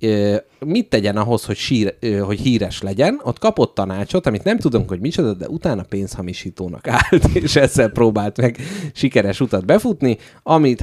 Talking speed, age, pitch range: 155 wpm, 30-49, 95-125 Hz